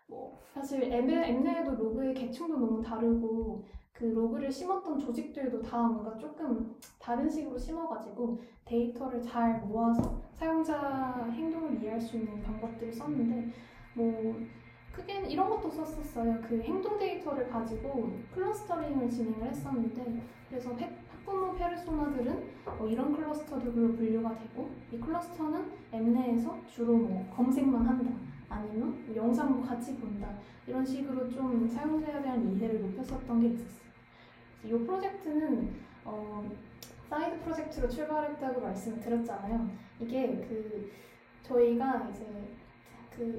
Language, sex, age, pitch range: Korean, female, 10-29, 230-290 Hz